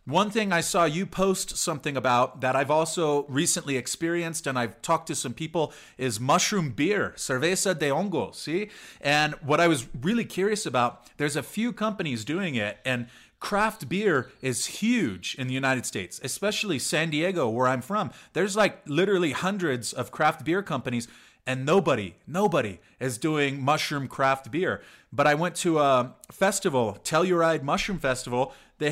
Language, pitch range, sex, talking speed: English, 130-175 Hz, male, 165 wpm